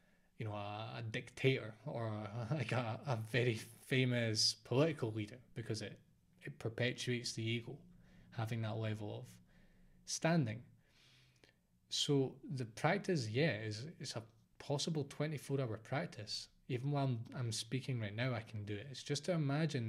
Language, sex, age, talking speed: English, male, 20-39, 155 wpm